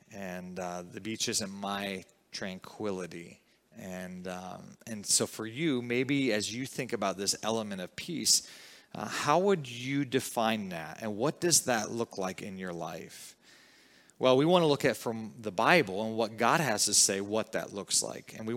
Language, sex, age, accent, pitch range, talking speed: English, male, 30-49, American, 100-125 Hz, 185 wpm